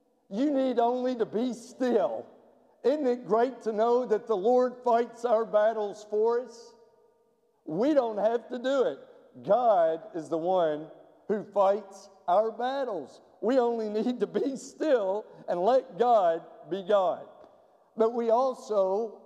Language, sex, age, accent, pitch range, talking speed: English, male, 50-69, American, 195-250 Hz, 145 wpm